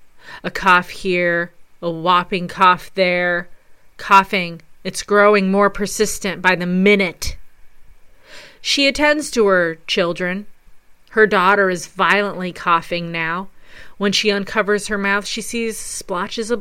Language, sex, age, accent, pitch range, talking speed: English, female, 30-49, American, 170-210 Hz, 125 wpm